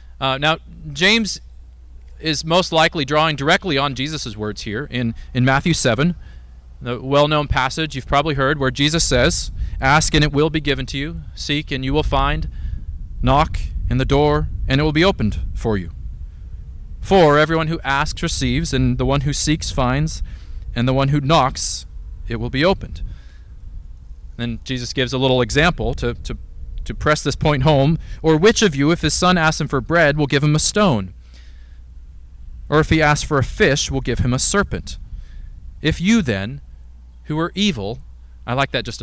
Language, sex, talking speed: English, male, 185 wpm